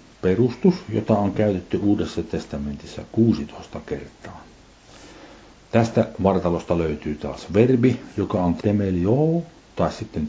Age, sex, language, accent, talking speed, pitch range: 60-79, male, Finnish, native, 105 wpm, 85-110 Hz